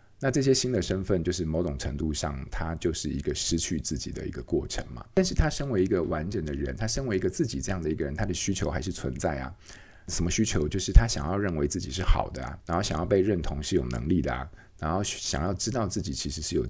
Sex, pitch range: male, 80-100 Hz